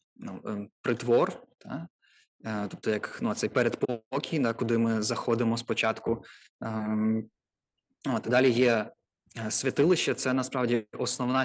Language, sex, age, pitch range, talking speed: Ukrainian, male, 20-39, 115-125 Hz, 100 wpm